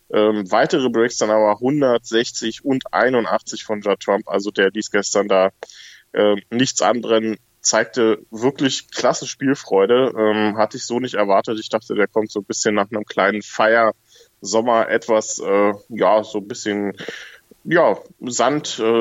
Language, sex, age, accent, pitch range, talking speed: German, male, 20-39, German, 100-115 Hz, 150 wpm